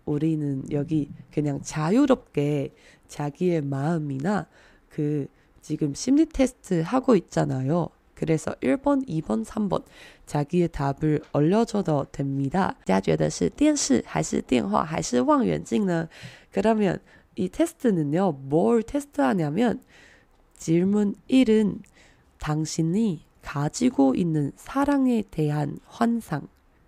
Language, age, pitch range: Chinese, 20-39, 150-235 Hz